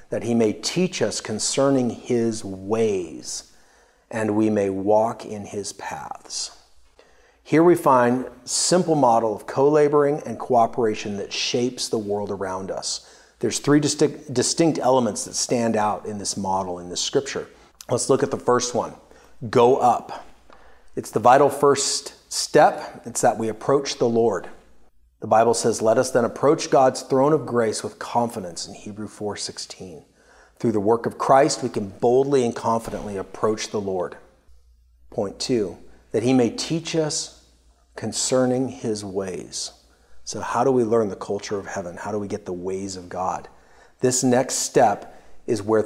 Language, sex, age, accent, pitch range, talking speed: English, male, 40-59, American, 100-130 Hz, 160 wpm